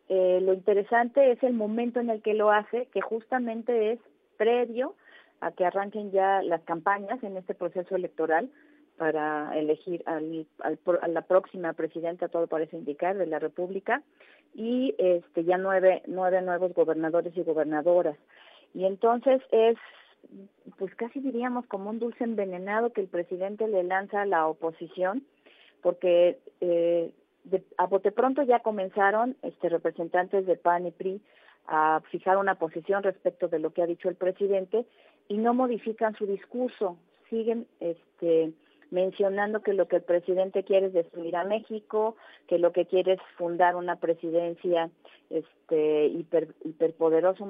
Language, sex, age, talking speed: Spanish, female, 40-59, 155 wpm